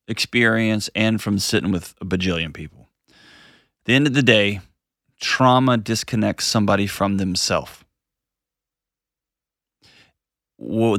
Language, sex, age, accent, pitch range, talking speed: English, male, 30-49, American, 95-110 Hz, 105 wpm